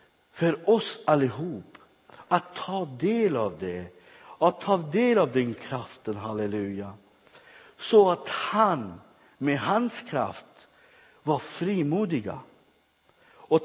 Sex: male